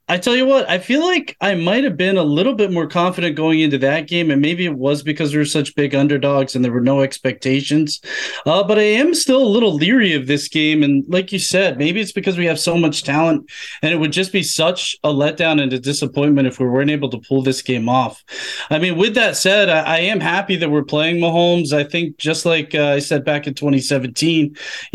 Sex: male